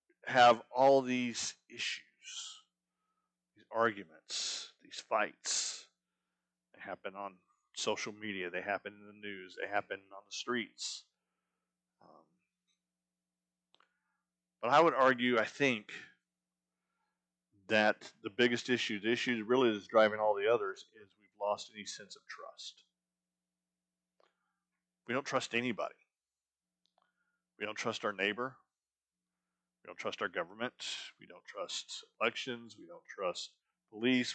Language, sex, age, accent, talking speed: English, male, 40-59, American, 125 wpm